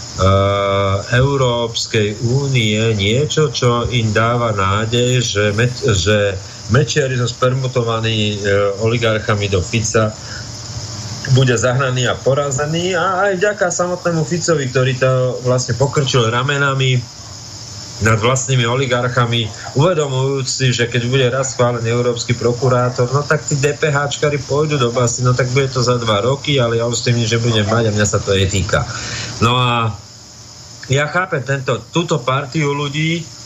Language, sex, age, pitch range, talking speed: Slovak, male, 30-49, 110-130 Hz, 135 wpm